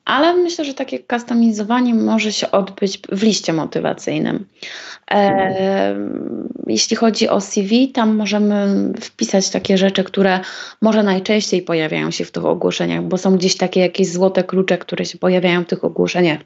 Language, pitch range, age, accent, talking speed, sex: Polish, 175-215 Hz, 20-39, native, 150 wpm, female